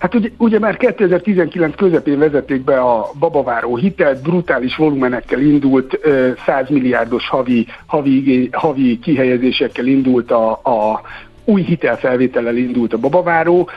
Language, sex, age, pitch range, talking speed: Hungarian, male, 60-79, 130-165 Hz, 125 wpm